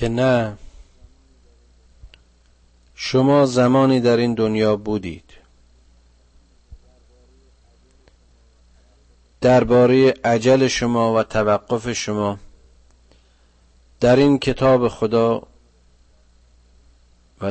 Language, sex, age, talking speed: Persian, male, 50-69, 65 wpm